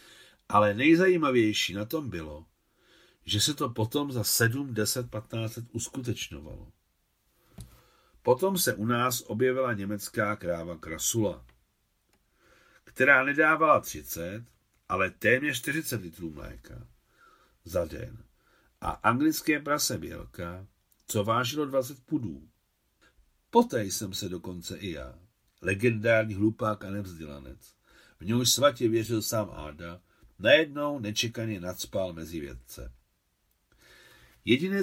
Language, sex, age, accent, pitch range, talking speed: Czech, male, 60-79, native, 100-130 Hz, 110 wpm